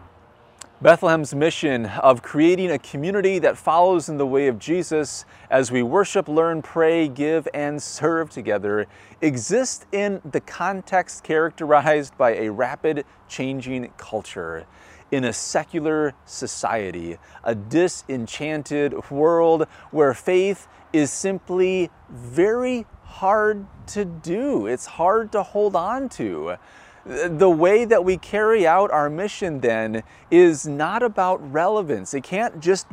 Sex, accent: male, American